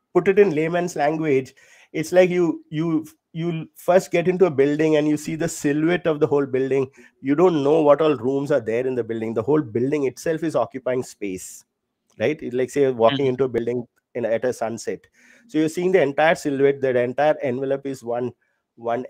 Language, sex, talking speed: English, male, 205 wpm